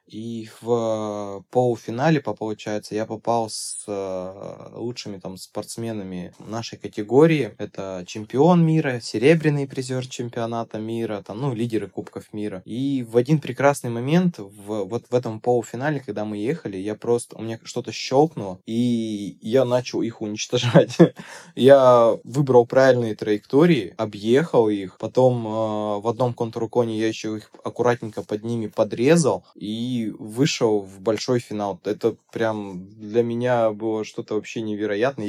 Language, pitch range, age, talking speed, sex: Russian, 105-125 Hz, 20-39, 130 wpm, male